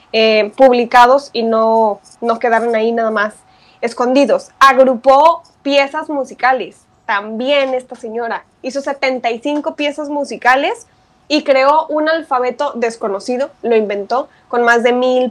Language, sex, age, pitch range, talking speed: Spanish, female, 20-39, 235-290 Hz, 120 wpm